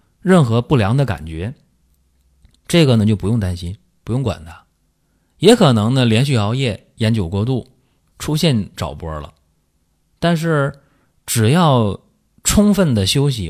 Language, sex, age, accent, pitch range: Chinese, male, 30-49, native, 85-130 Hz